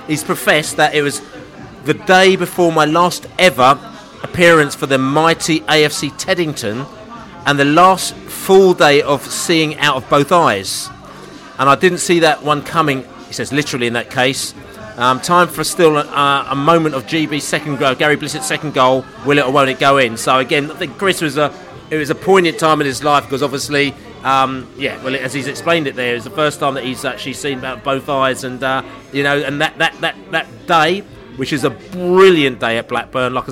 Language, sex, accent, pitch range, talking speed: English, male, British, 125-150 Hz, 210 wpm